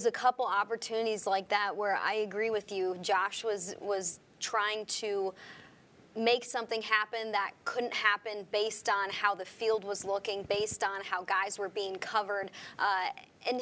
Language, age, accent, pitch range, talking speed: English, 20-39, American, 200-235 Hz, 165 wpm